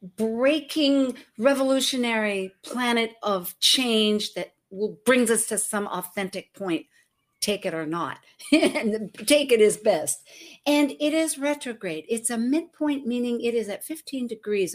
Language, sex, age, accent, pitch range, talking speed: English, female, 60-79, American, 205-285 Hz, 140 wpm